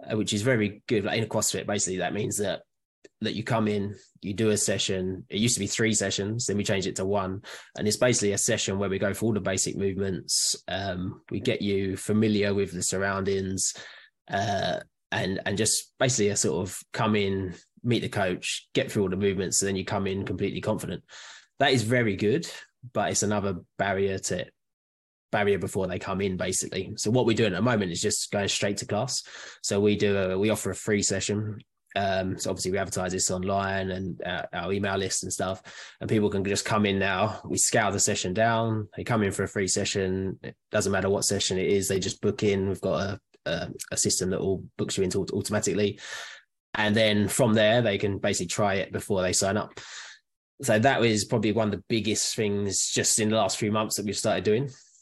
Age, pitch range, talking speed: 20-39, 95-105 Hz, 220 wpm